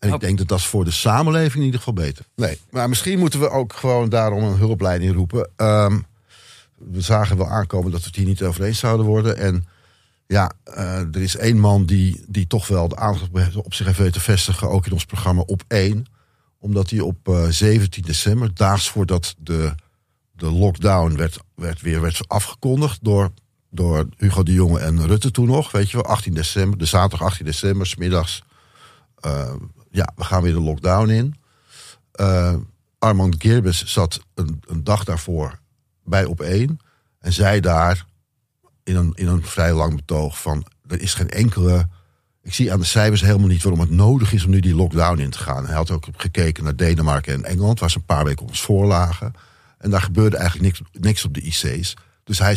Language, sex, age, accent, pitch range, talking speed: Dutch, male, 50-69, Dutch, 90-110 Hz, 200 wpm